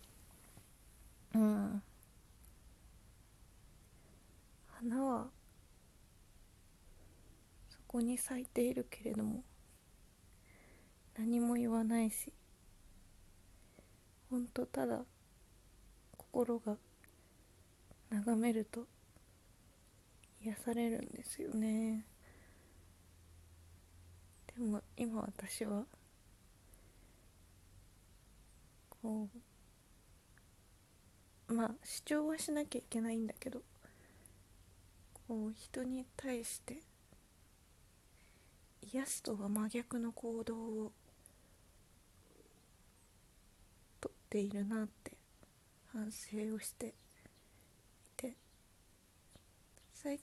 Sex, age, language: female, 20-39, Japanese